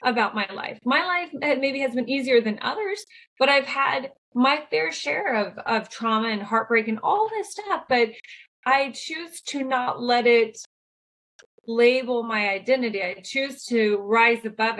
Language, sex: English, female